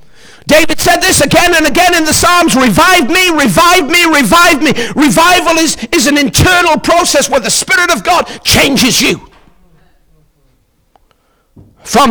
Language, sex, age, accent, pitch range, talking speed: English, male, 50-69, British, 235-340 Hz, 145 wpm